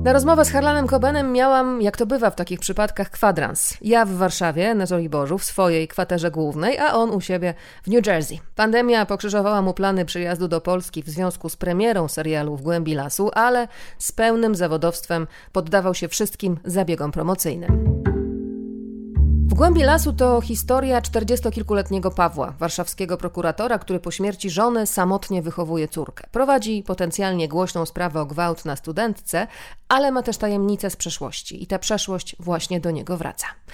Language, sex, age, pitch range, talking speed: Polish, female, 30-49, 170-225 Hz, 160 wpm